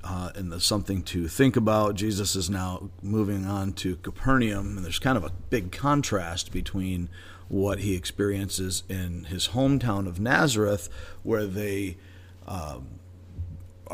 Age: 40-59